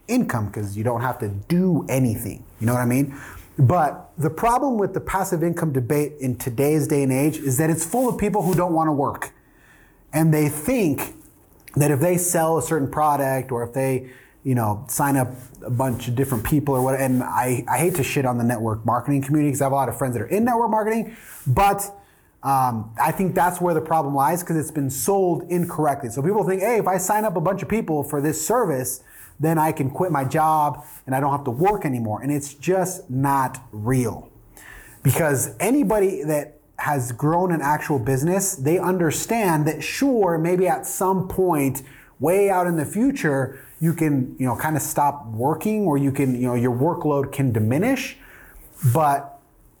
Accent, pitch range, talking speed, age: American, 130-175 Hz, 205 wpm, 30-49